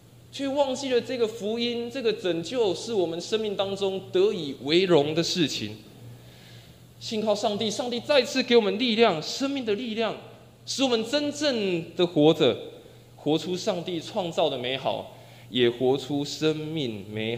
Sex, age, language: male, 20-39, Chinese